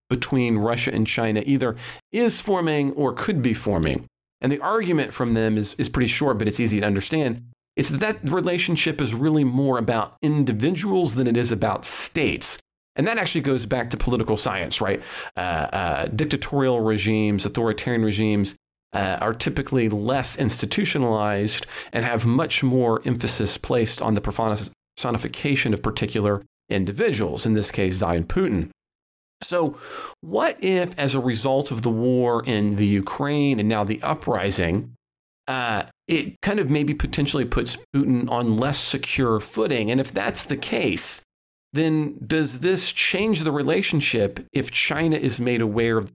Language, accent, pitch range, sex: English, American, 110-140 Hz, male